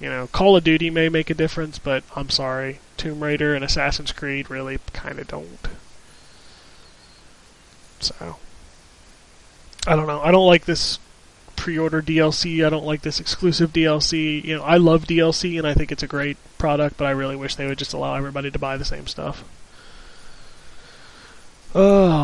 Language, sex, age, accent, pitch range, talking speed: English, male, 20-39, American, 145-170 Hz, 175 wpm